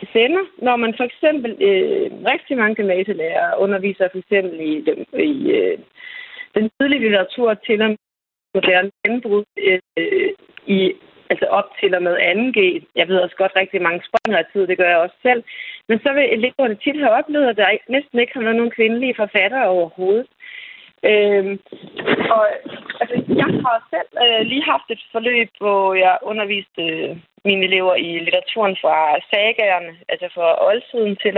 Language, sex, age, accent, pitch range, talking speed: Danish, female, 30-49, native, 190-270 Hz, 170 wpm